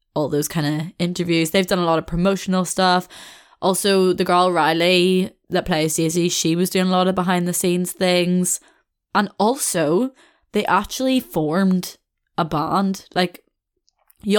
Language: English